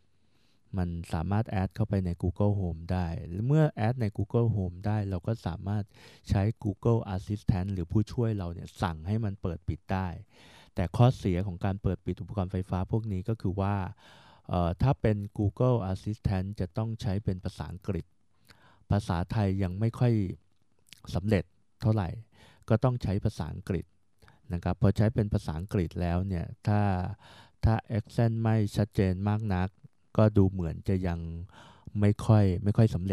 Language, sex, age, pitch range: Thai, male, 20-39, 90-110 Hz